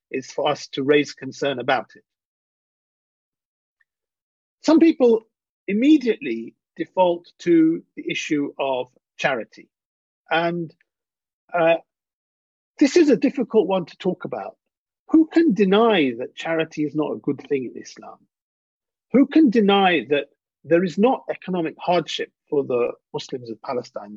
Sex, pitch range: male, 165-260 Hz